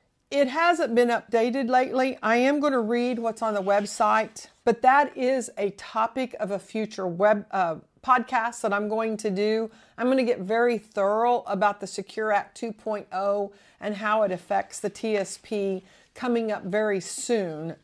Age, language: 50-69, English